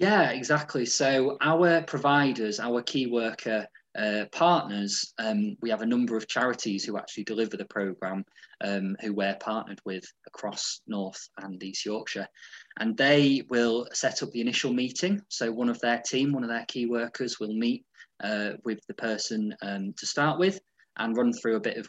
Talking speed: 180 wpm